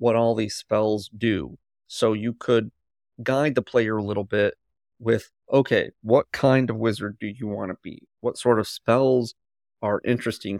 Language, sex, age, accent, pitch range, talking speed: English, male, 30-49, American, 100-120 Hz, 175 wpm